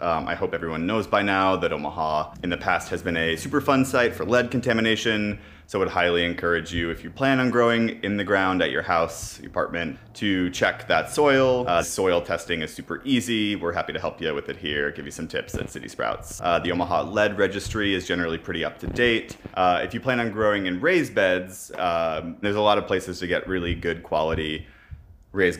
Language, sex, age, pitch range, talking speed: English, male, 30-49, 85-110 Hz, 225 wpm